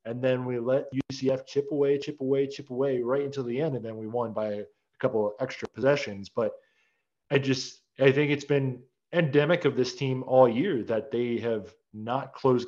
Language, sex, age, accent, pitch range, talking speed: English, male, 20-39, American, 110-135 Hz, 205 wpm